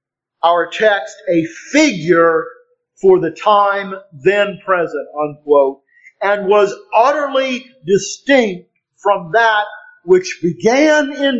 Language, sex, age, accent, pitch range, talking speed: English, male, 50-69, American, 150-200 Hz, 100 wpm